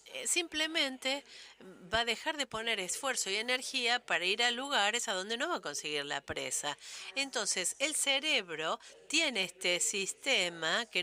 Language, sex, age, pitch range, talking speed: English, female, 50-69, 165-245 Hz, 150 wpm